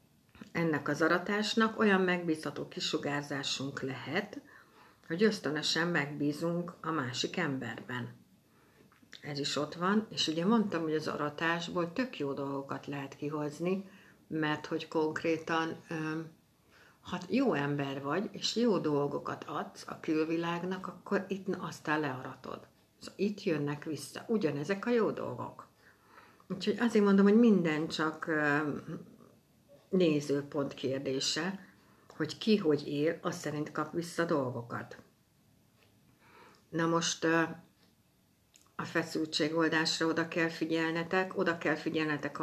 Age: 60-79